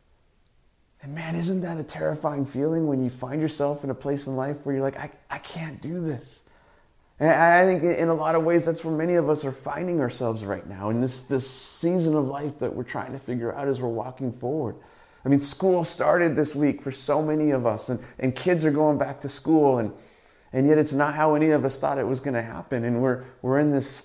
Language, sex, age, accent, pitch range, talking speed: English, male, 30-49, American, 125-155 Hz, 240 wpm